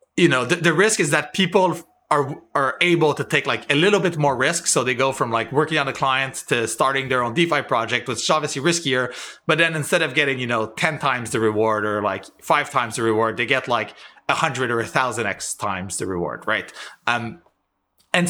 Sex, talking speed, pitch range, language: male, 230 wpm, 120-165 Hz, English